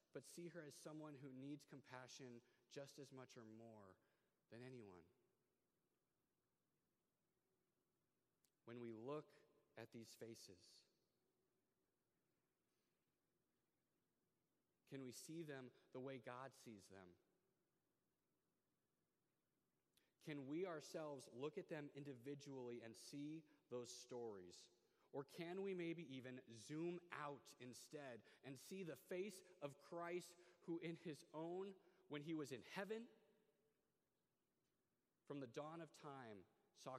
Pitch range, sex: 130-175 Hz, male